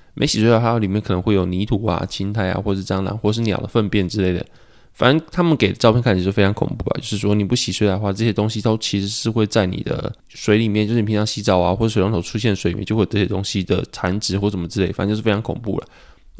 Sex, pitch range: male, 100-115 Hz